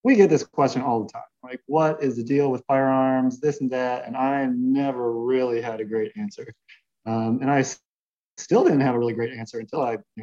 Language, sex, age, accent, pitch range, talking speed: English, male, 20-39, American, 120-140 Hz, 225 wpm